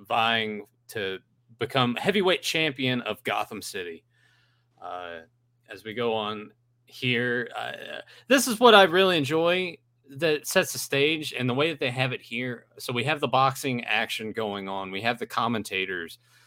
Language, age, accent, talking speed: English, 30-49, American, 165 wpm